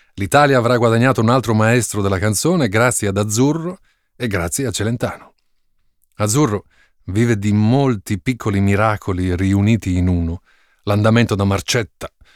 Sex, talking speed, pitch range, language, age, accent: male, 130 wpm, 95-120 Hz, Italian, 30-49, native